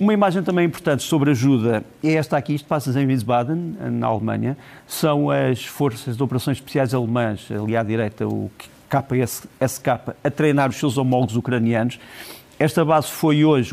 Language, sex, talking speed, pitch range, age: Portuguese, male, 160 wpm, 125-150 Hz, 50-69